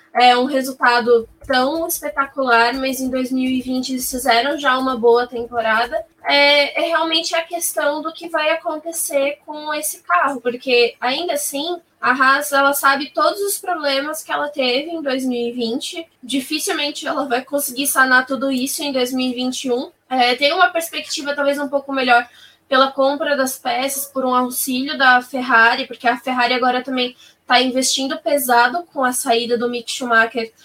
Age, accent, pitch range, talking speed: 10-29, Brazilian, 250-290 Hz, 155 wpm